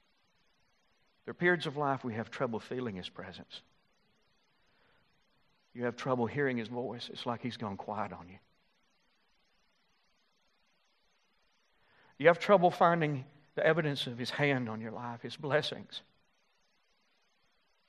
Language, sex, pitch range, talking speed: English, male, 135-180 Hz, 130 wpm